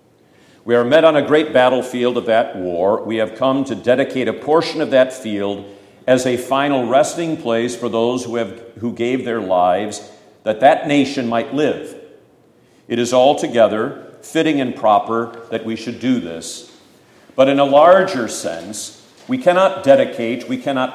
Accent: American